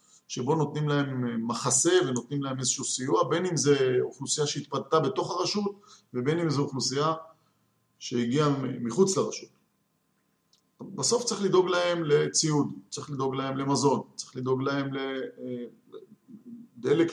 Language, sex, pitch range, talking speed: Hebrew, male, 125-175 Hz, 125 wpm